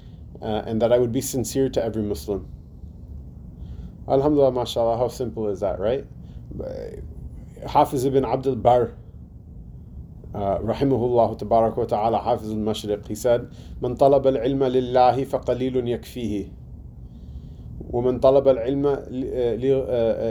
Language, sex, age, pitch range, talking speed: English, male, 30-49, 105-135 Hz, 110 wpm